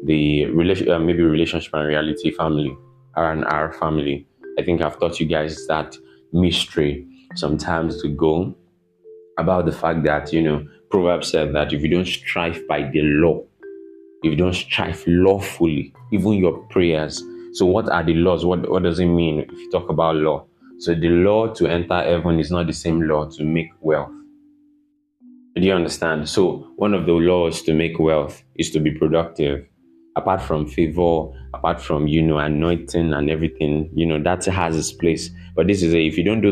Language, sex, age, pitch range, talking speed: English, male, 20-39, 75-90 Hz, 185 wpm